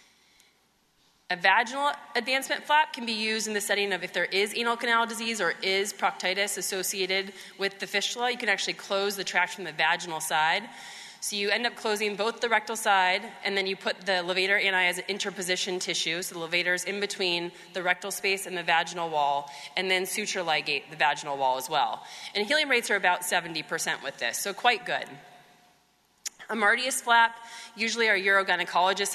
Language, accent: English, American